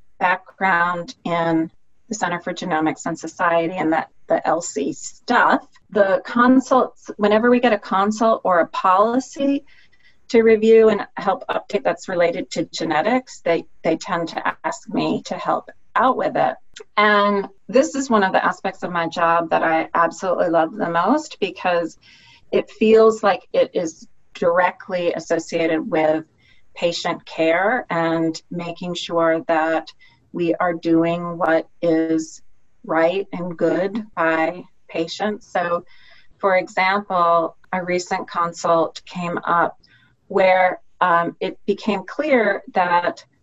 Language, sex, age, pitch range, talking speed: English, female, 40-59, 165-205 Hz, 135 wpm